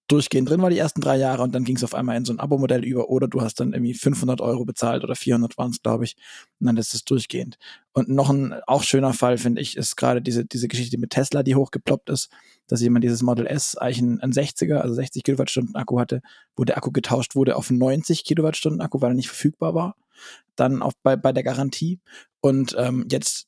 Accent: German